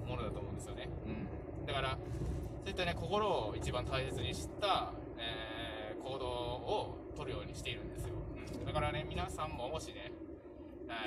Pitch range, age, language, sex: 85-130 Hz, 20-39, Japanese, male